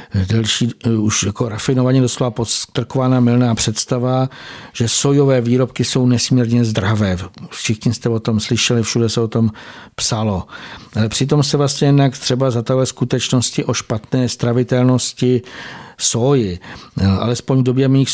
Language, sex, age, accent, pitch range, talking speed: Czech, male, 60-79, native, 115-125 Hz, 135 wpm